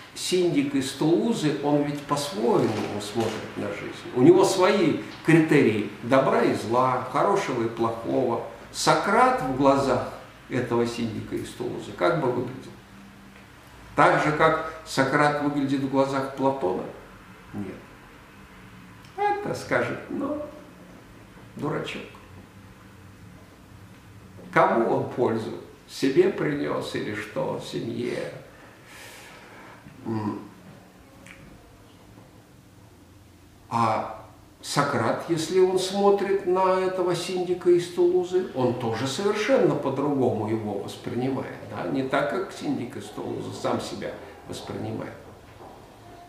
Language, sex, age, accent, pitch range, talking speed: Russian, male, 50-69, native, 115-180 Hz, 100 wpm